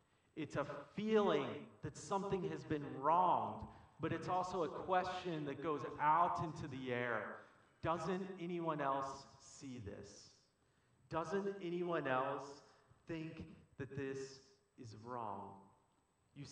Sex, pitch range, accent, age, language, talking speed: male, 125-165 Hz, American, 40-59, English, 120 wpm